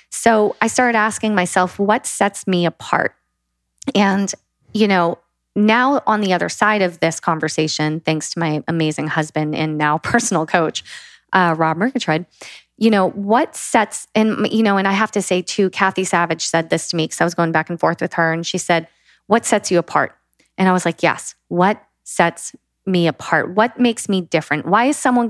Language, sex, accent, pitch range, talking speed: English, female, American, 170-215 Hz, 195 wpm